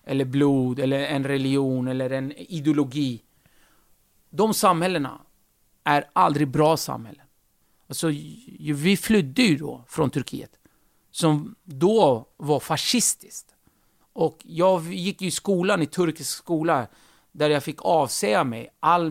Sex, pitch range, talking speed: male, 135-170 Hz, 125 wpm